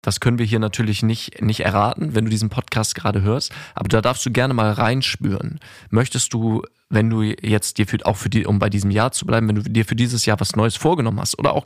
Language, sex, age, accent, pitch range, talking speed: German, male, 20-39, German, 105-125 Hz, 250 wpm